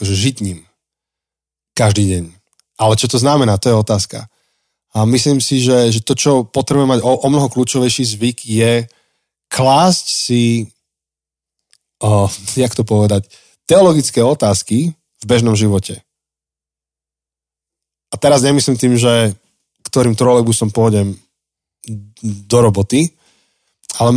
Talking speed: 115 wpm